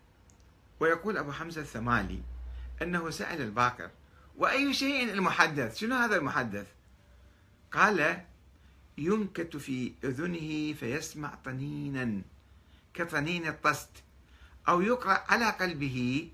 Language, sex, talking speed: Arabic, male, 90 wpm